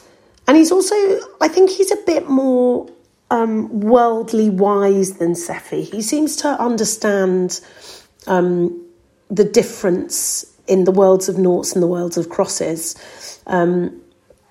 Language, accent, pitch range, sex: English, British, 185-260 Hz, female